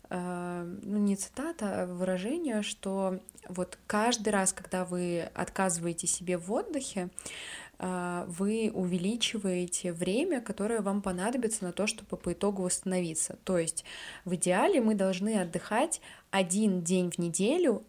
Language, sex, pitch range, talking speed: Russian, female, 180-215 Hz, 125 wpm